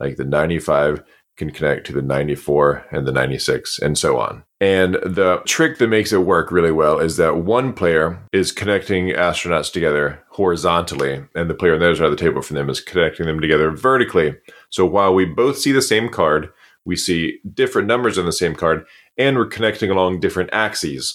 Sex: male